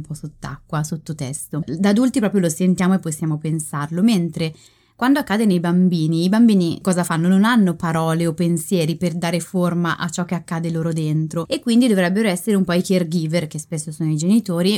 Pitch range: 165-200 Hz